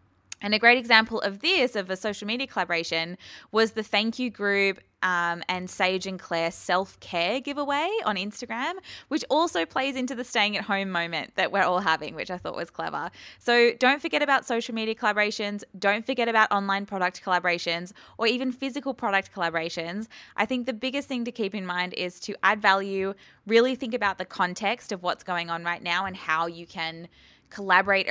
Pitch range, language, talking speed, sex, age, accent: 170-225 Hz, English, 190 wpm, female, 20-39, Australian